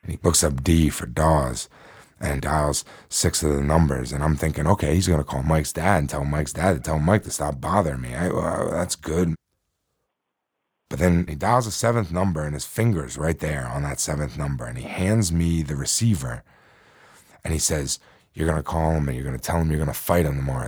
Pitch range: 75-95 Hz